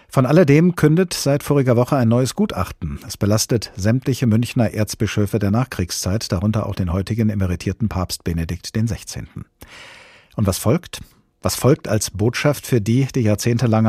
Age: 50-69